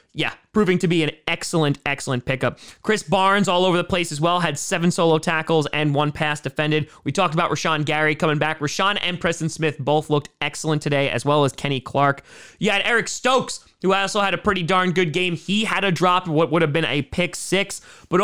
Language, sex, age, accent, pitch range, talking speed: English, male, 20-39, American, 150-185 Hz, 225 wpm